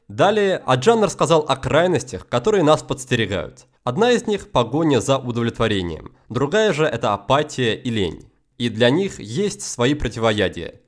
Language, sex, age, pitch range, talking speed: Russian, male, 20-39, 120-170 Hz, 145 wpm